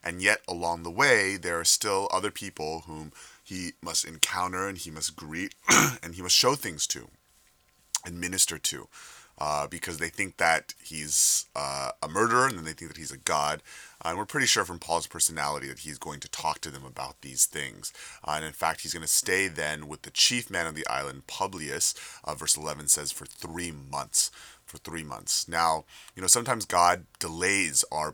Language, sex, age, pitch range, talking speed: English, male, 30-49, 75-95 Hz, 205 wpm